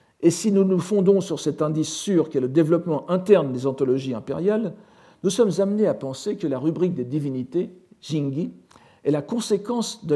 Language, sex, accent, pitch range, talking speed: French, male, French, 130-185 Hz, 185 wpm